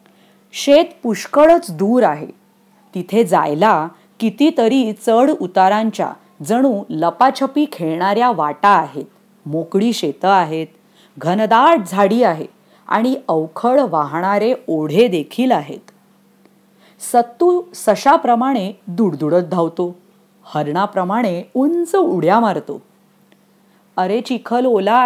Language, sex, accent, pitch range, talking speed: English, female, Indian, 190-265 Hz, 85 wpm